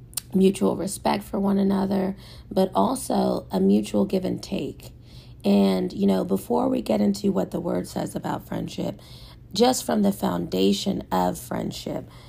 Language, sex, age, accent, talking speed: English, female, 40-59, American, 150 wpm